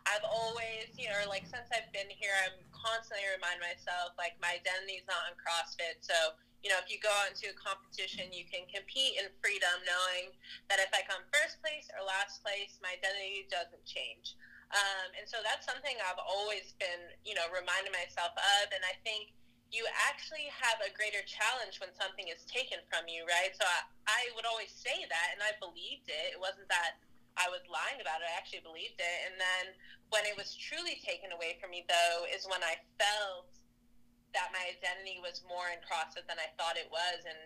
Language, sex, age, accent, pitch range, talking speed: English, female, 20-39, American, 175-205 Hz, 205 wpm